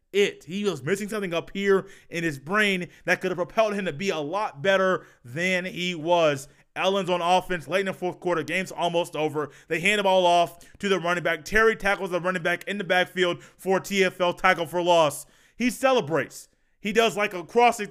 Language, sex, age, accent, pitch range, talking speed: English, male, 30-49, American, 180-225 Hz, 210 wpm